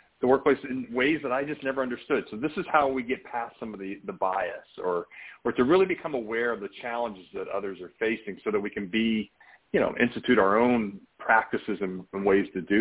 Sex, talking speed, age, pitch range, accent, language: male, 235 wpm, 40-59, 100-130 Hz, American, English